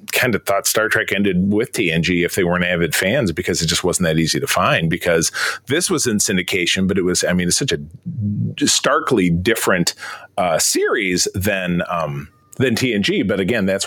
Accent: American